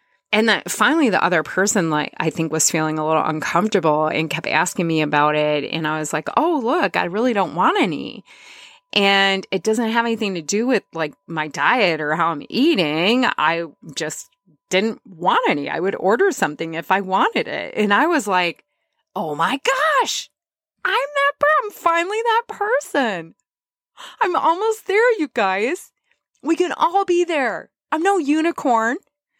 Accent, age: American, 30-49